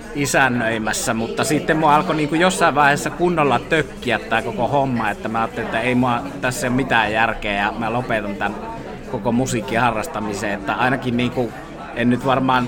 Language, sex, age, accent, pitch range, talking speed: Finnish, male, 20-39, native, 120-140 Hz, 165 wpm